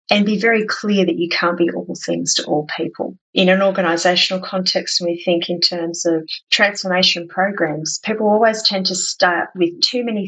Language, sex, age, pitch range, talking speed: English, female, 30-49, 165-200 Hz, 195 wpm